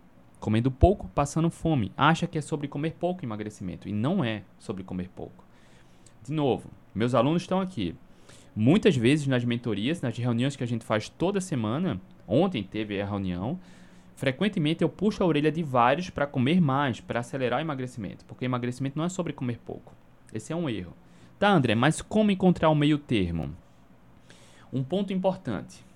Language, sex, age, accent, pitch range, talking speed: Portuguese, male, 20-39, Brazilian, 105-160 Hz, 175 wpm